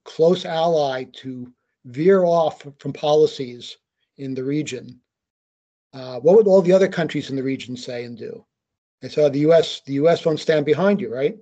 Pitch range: 130-160 Hz